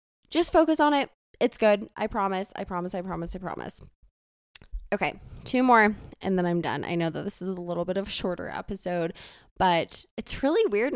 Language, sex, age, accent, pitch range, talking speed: English, female, 20-39, American, 185-240 Hz, 205 wpm